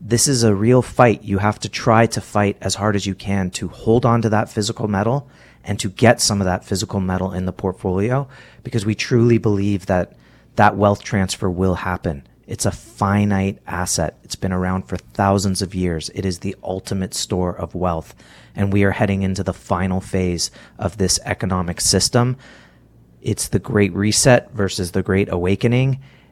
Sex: male